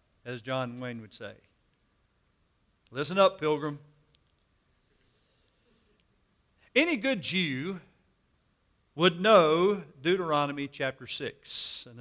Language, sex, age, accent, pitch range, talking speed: English, male, 50-69, American, 135-200 Hz, 85 wpm